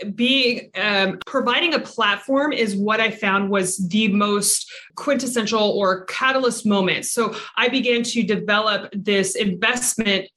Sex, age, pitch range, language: female, 20-39, 200-245 Hz, English